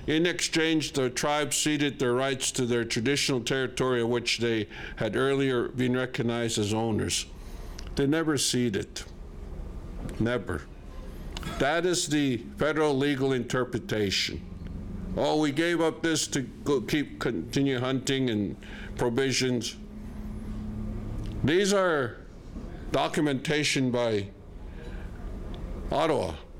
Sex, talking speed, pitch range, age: male, 105 wpm, 110-140 Hz, 50-69